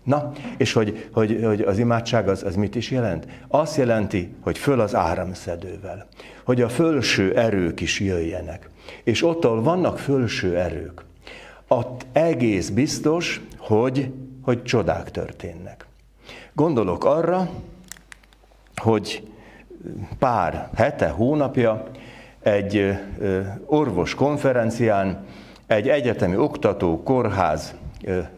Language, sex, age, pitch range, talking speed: Hungarian, male, 60-79, 95-125 Hz, 100 wpm